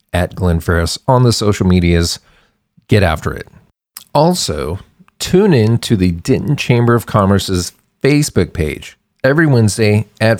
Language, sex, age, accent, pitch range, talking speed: English, male, 40-59, American, 90-115 Hz, 140 wpm